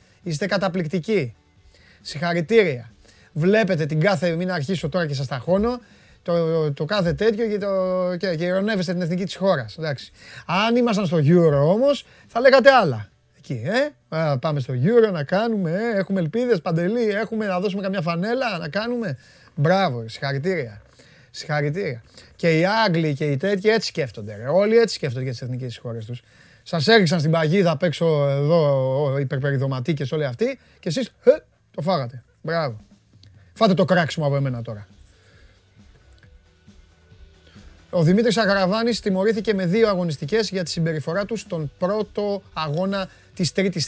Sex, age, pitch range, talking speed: male, 30-49, 140-190 Hz, 150 wpm